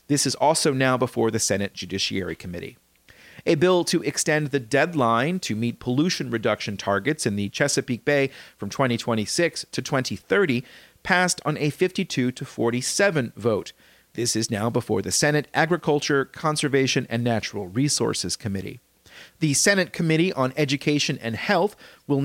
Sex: male